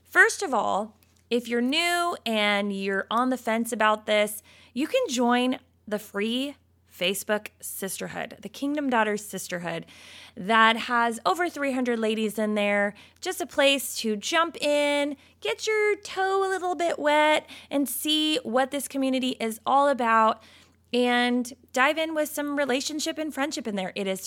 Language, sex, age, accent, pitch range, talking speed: English, female, 20-39, American, 205-290 Hz, 160 wpm